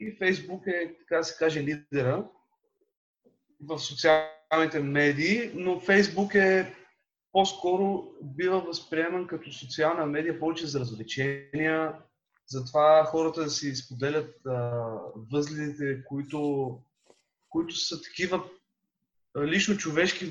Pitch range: 145-180 Hz